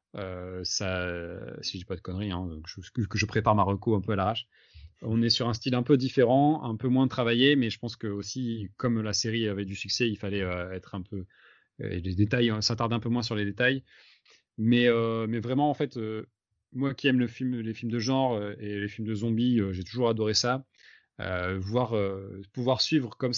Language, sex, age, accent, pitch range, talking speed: French, male, 30-49, French, 100-120 Hz, 230 wpm